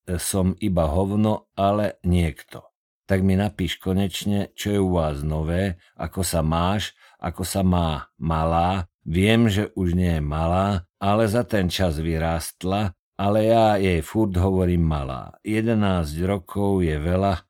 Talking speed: 145 wpm